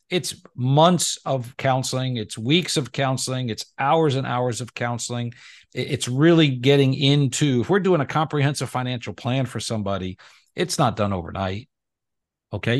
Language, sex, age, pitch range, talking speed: English, male, 50-69, 110-145 Hz, 150 wpm